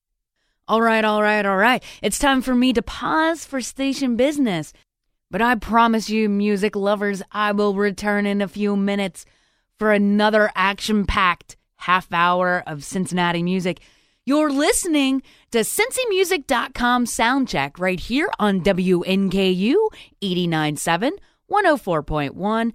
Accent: American